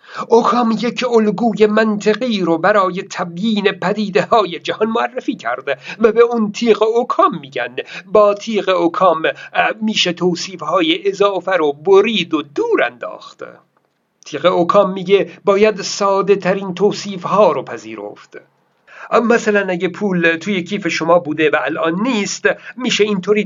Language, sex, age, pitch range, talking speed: Persian, male, 50-69, 165-215 Hz, 135 wpm